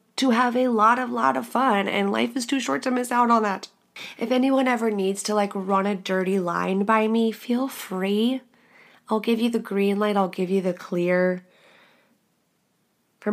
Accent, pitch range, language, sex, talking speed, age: American, 190-225 Hz, English, female, 200 wpm, 20-39